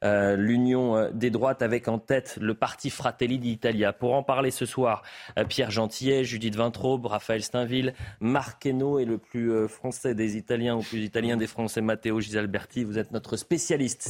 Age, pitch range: 30-49, 115-150 Hz